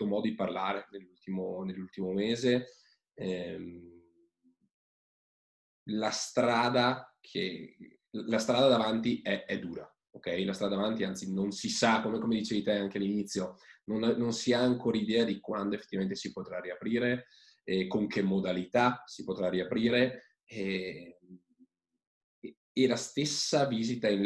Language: Italian